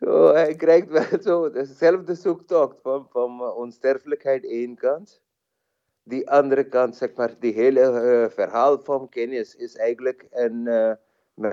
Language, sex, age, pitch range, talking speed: Dutch, male, 30-49, 115-150 Hz, 135 wpm